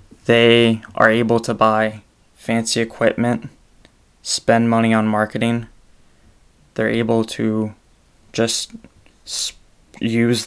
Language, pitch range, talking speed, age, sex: English, 110-115 Hz, 90 wpm, 20-39, male